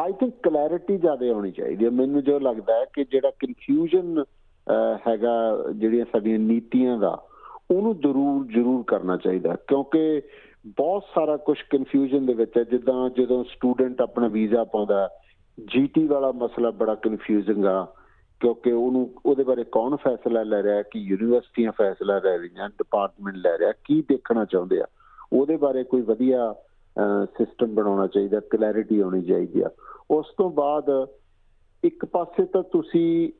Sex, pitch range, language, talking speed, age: male, 110-155 Hz, Punjabi, 145 wpm, 50-69